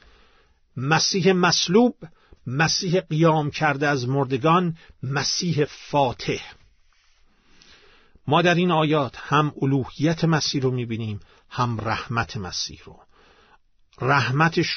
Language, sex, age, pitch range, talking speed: Persian, male, 50-69, 120-160 Hz, 95 wpm